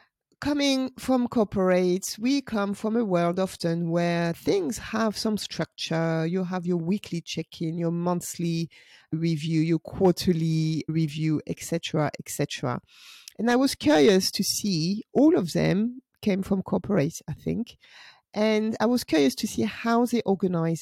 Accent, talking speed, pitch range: French, 145 wpm, 165-225 Hz